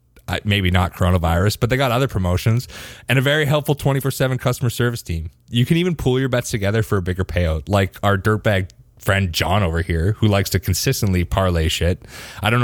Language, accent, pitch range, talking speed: English, American, 90-120 Hz, 200 wpm